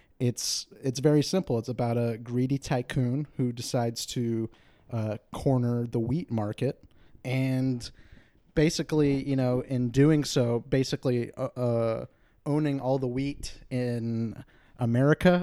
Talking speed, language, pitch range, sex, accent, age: 130 wpm, English, 120-140 Hz, male, American, 30-49